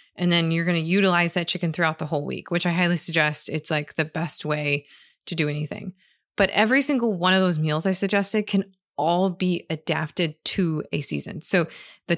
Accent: American